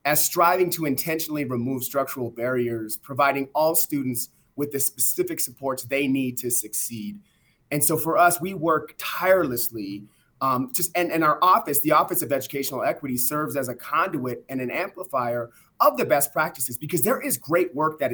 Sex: male